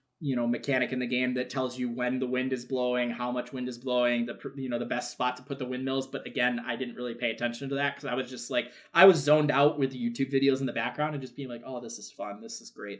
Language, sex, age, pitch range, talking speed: English, male, 20-39, 125-165 Hz, 300 wpm